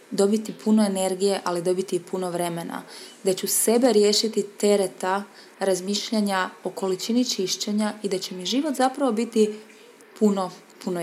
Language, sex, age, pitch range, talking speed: Croatian, female, 20-39, 180-215 Hz, 140 wpm